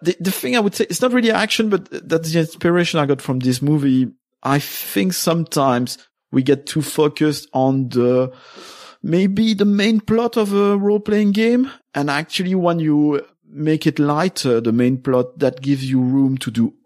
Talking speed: 185 wpm